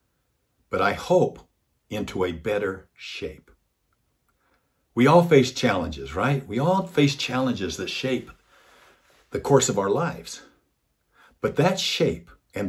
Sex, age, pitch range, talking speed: male, 60-79, 95-130 Hz, 130 wpm